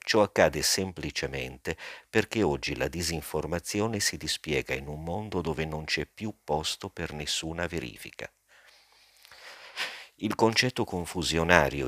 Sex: male